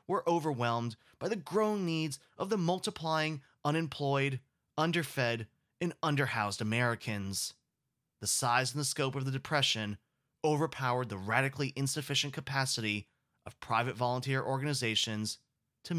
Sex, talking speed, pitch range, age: male, 120 wpm, 115-145 Hz, 20-39